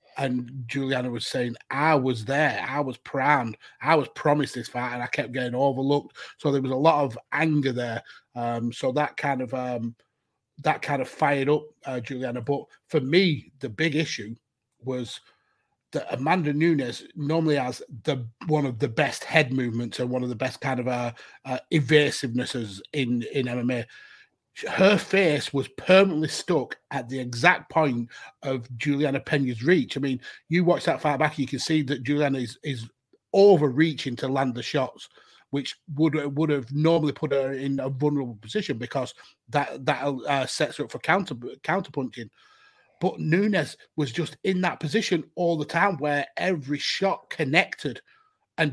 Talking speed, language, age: 175 wpm, English, 30-49